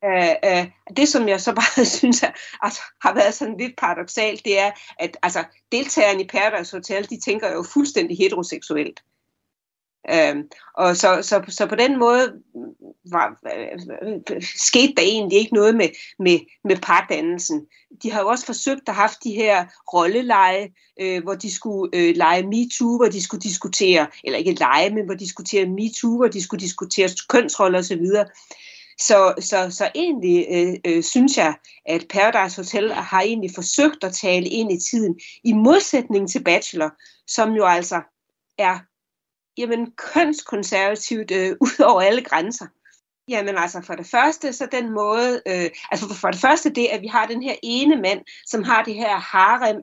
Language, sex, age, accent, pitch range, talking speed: Danish, female, 30-49, native, 190-250 Hz, 175 wpm